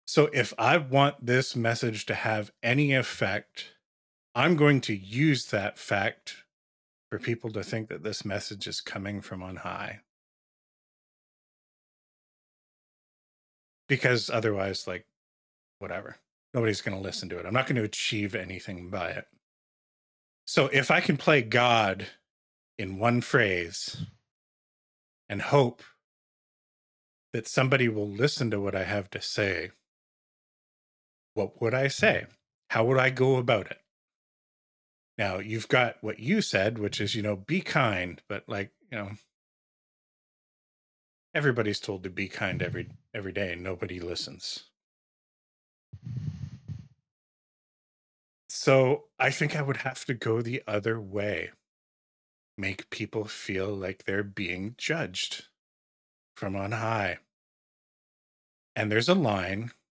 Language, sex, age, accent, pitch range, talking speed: English, male, 30-49, American, 95-125 Hz, 130 wpm